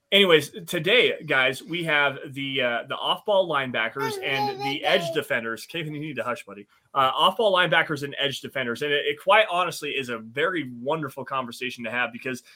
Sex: male